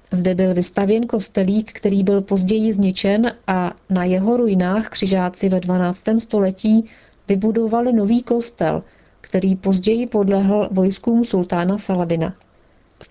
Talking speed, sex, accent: 120 wpm, female, native